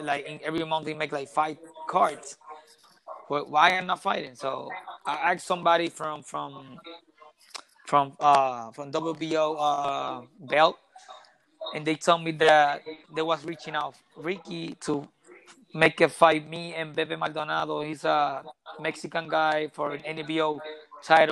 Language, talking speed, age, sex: English, 145 wpm, 20-39, male